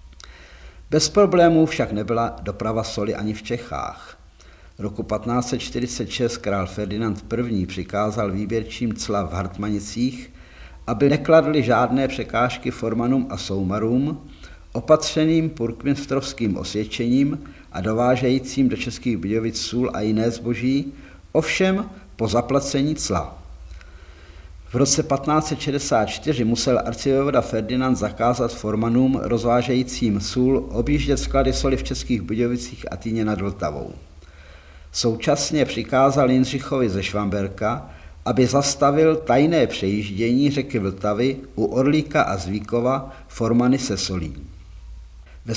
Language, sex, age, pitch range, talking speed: Czech, male, 50-69, 100-130 Hz, 105 wpm